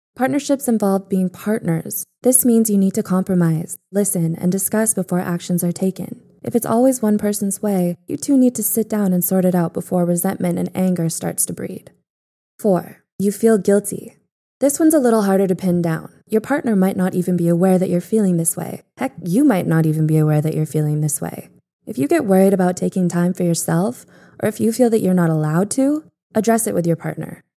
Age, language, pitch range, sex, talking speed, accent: 20-39, English, 180-225 Hz, female, 215 wpm, American